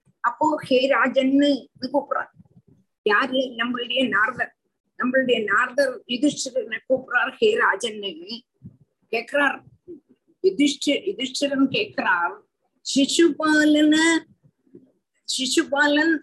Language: Tamil